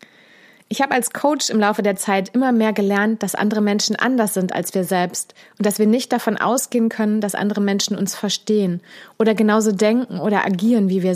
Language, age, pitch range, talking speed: German, 30-49, 195-235 Hz, 205 wpm